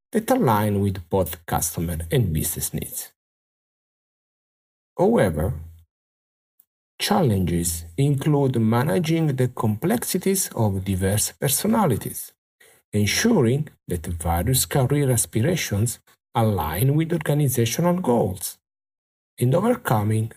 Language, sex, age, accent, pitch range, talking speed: English, male, 50-69, Italian, 100-155 Hz, 80 wpm